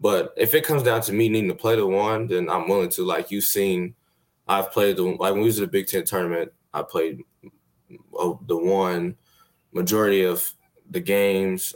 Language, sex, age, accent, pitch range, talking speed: English, male, 20-39, American, 90-105 Hz, 200 wpm